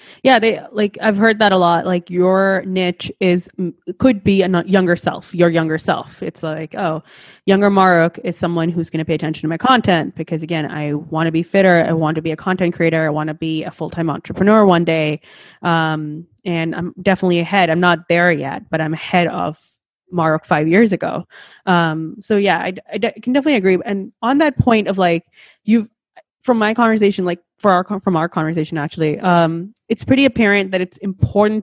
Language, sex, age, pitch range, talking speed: English, female, 20-39, 165-205 Hz, 205 wpm